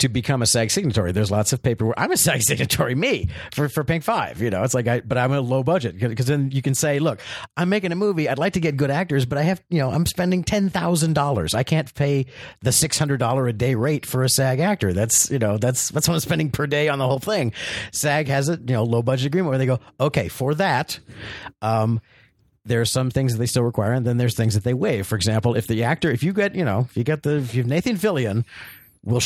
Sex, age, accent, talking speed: male, 50-69, American, 265 wpm